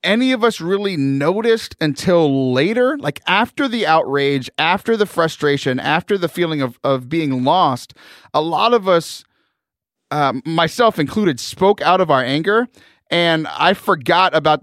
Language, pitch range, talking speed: English, 140-195 Hz, 150 wpm